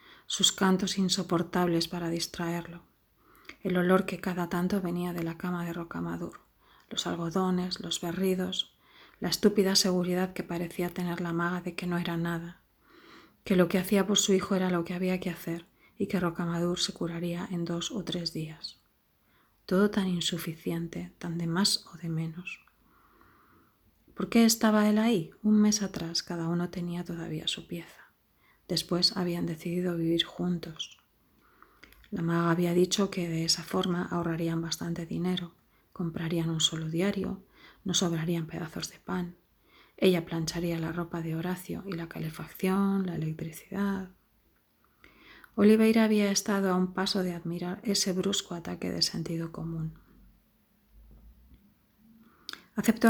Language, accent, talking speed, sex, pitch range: Spanish, Spanish, 145 wpm, female, 170-195 Hz